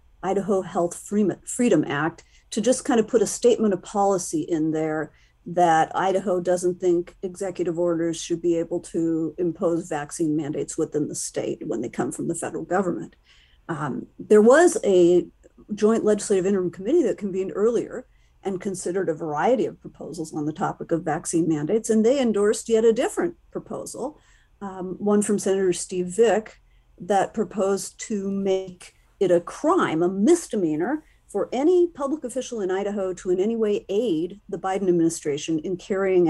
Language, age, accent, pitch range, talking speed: English, 50-69, American, 170-215 Hz, 165 wpm